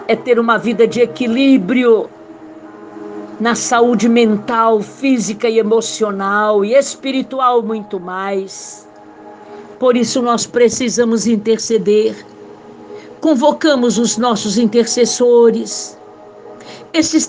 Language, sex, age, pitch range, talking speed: Portuguese, female, 60-79, 225-250 Hz, 90 wpm